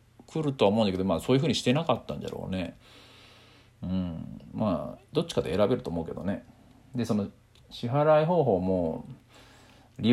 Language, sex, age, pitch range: Japanese, male, 40-59, 95-125 Hz